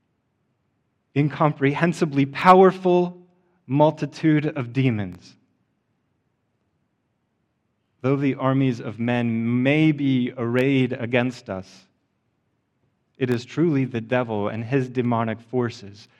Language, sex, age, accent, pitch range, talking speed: English, male, 30-49, American, 110-140 Hz, 90 wpm